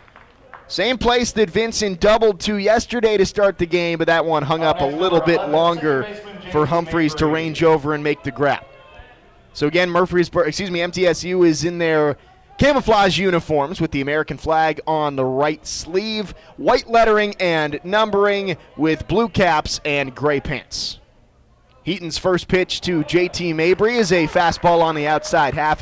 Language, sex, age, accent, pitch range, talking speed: English, male, 30-49, American, 155-200 Hz, 165 wpm